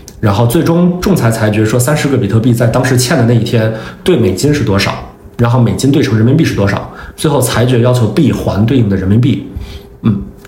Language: Chinese